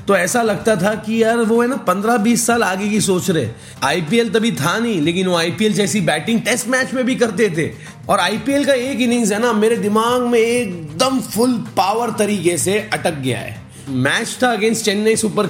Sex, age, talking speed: male, 30-49, 160 wpm